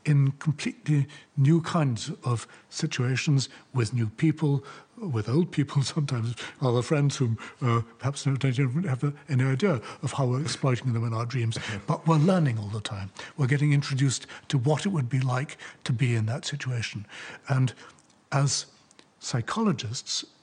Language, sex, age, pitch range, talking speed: English, male, 60-79, 115-150 Hz, 155 wpm